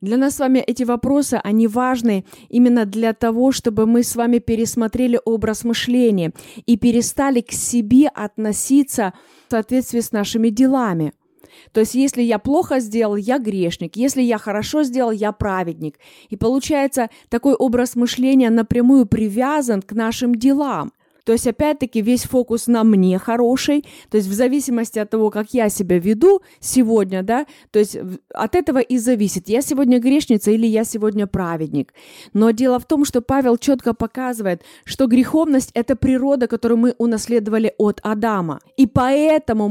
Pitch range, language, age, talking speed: 215-260 Hz, Russian, 20-39, 155 wpm